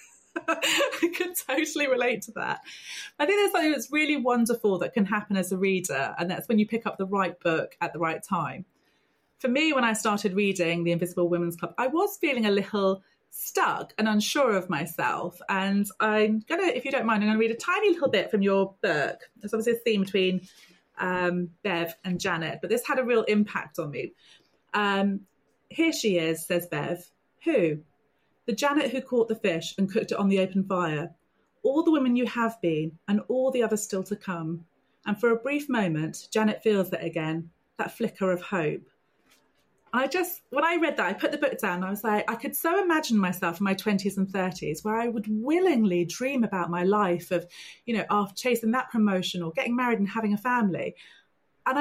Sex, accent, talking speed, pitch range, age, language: female, British, 205 wpm, 185-255 Hz, 30-49, English